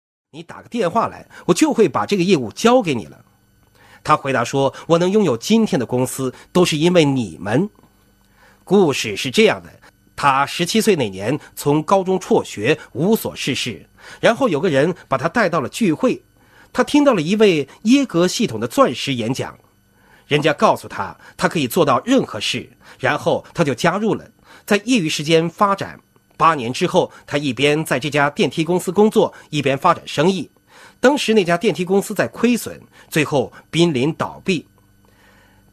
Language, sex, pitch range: Chinese, male, 135-210 Hz